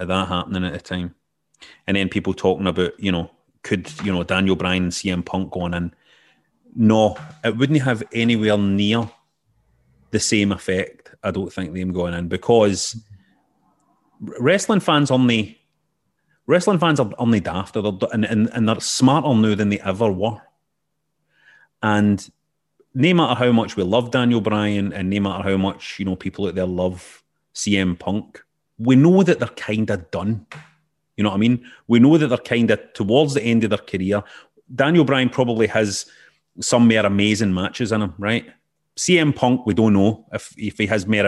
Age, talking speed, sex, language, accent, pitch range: 30-49, 180 wpm, male, English, British, 95-125 Hz